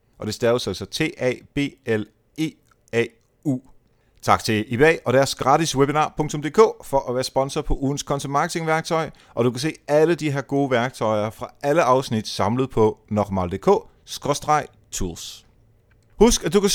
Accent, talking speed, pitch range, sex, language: native, 145 wpm, 110-145 Hz, male, Danish